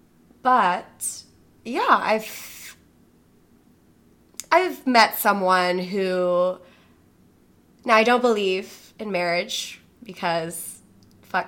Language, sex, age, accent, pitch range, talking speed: English, female, 20-39, American, 190-255 Hz, 80 wpm